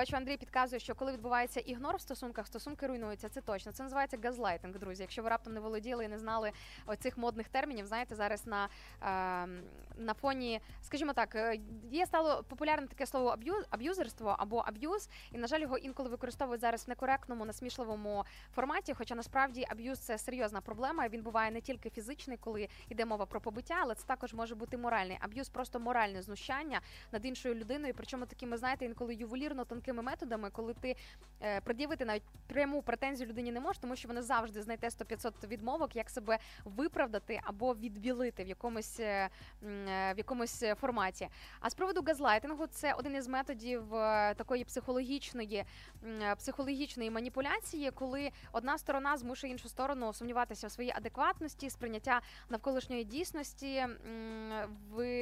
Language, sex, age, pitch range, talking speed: Ukrainian, female, 20-39, 220-265 Hz, 160 wpm